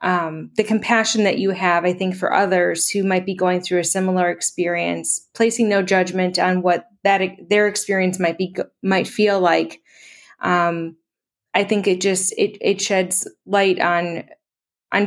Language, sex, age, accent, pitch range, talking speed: English, female, 20-39, American, 180-195 Hz, 165 wpm